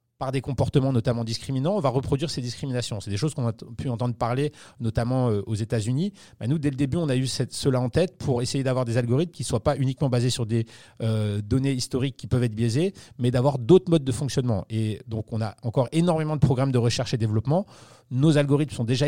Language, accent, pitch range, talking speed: French, French, 115-140 Hz, 240 wpm